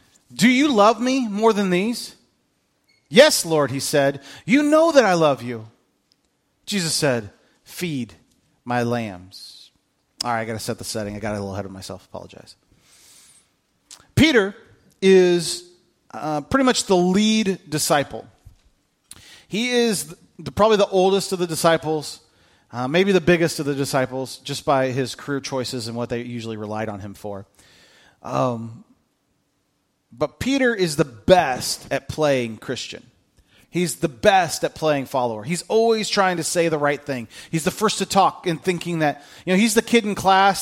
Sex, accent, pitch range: male, American, 130-195 Hz